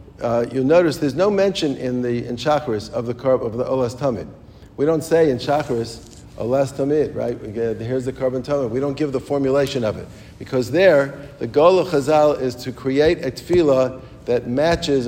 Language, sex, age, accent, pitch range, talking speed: English, male, 50-69, American, 125-150 Hz, 195 wpm